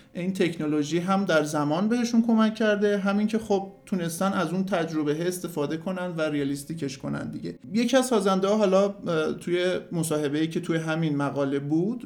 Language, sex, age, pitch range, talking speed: Persian, male, 50-69, 150-185 Hz, 170 wpm